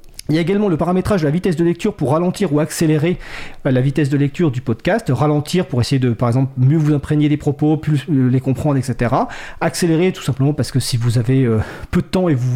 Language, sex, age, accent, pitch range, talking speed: French, male, 40-59, French, 130-170 Hz, 240 wpm